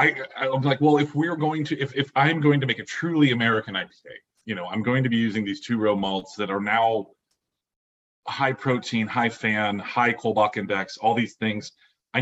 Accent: American